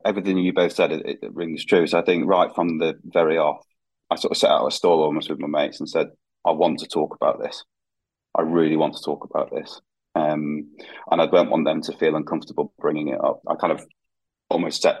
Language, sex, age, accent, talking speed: English, male, 30-49, British, 235 wpm